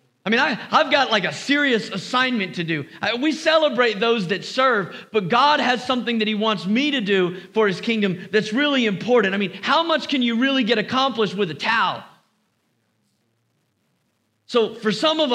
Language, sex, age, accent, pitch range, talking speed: English, male, 40-59, American, 175-245 Hz, 185 wpm